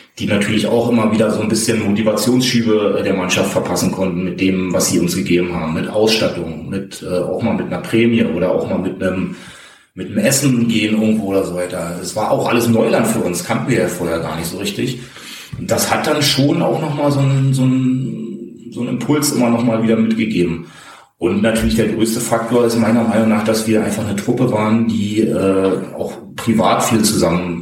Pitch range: 100-120 Hz